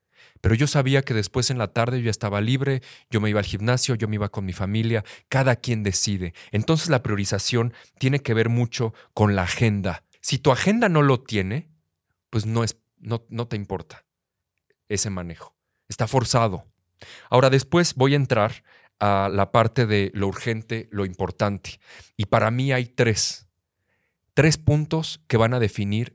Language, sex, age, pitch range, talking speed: Spanish, male, 40-59, 100-120 Hz, 175 wpm